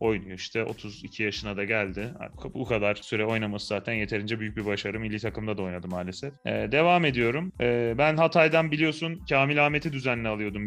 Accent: native